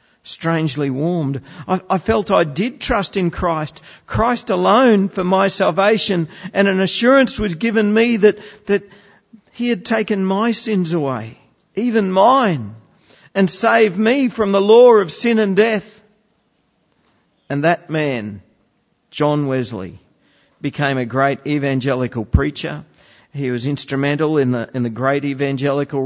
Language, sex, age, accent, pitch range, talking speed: English, male, 50-69, Australian, 135-205 Hz, 135 wpm